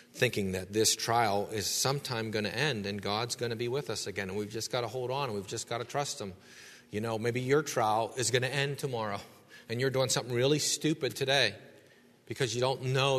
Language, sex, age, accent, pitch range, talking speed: English, male, 40-59, American, 115-160 Hz, 230 wpm